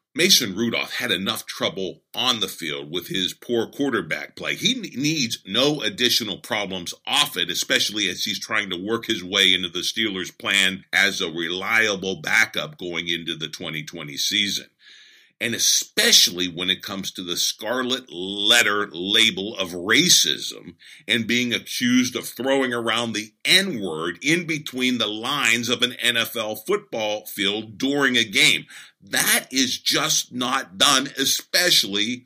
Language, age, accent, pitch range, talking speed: English, 50-69, American, 95-125 Hz, 145 wpm